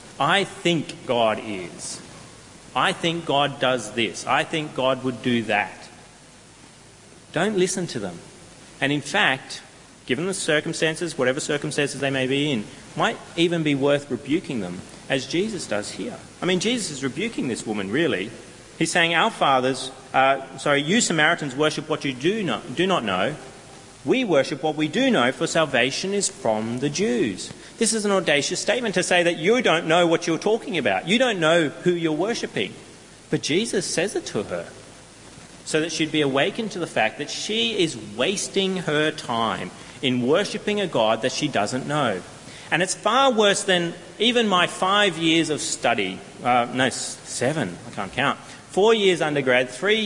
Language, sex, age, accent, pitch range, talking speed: English, male, 40-59, Australian, 135-185 Hz, 175 wpm